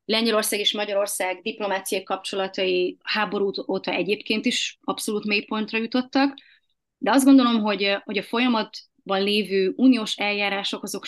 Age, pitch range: 30-49, 190-230 Hz